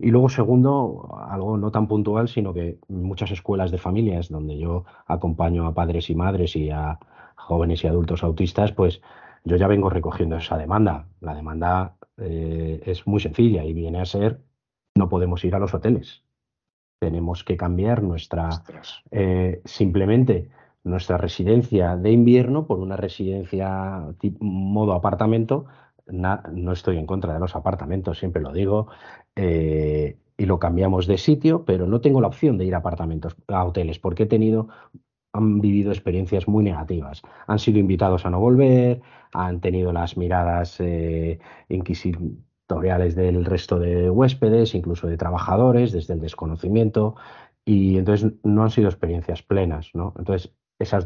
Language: Spanish